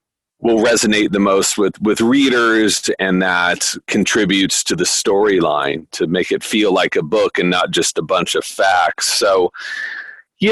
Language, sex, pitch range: English, male, 100-155 Hz